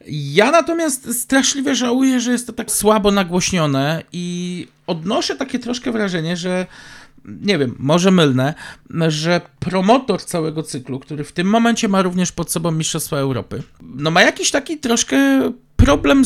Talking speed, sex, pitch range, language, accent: 150 wpm, male, 160-230 Hz, Polish, native